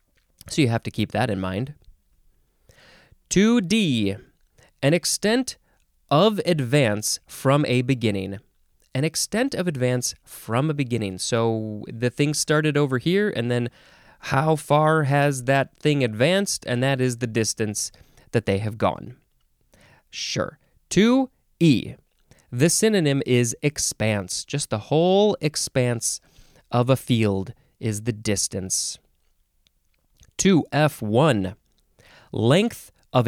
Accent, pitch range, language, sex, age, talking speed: American, 110-160 Hz, English, male, 20-39, 120 wpm